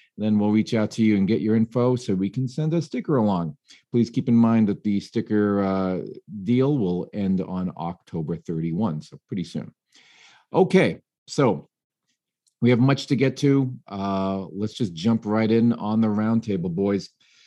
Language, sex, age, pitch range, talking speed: English, male, 40-59, 95-115 Hz, 180 wpm